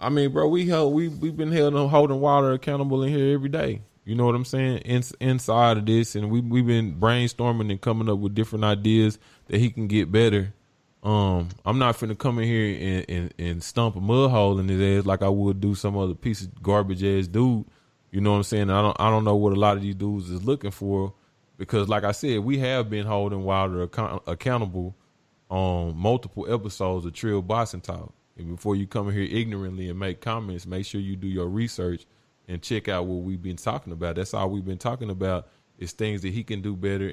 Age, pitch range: 20-39, 95-115 Hz